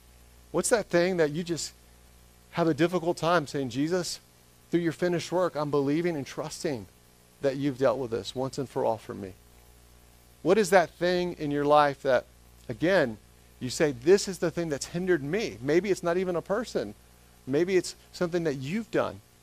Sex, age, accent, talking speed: male, 40-59, American, 190 wpm